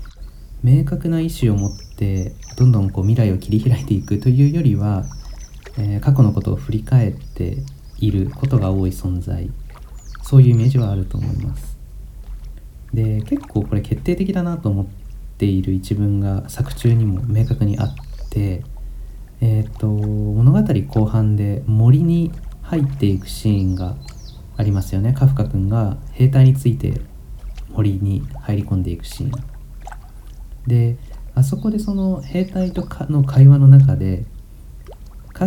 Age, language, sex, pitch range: 40-59, Japanese, male, 95-135 Hz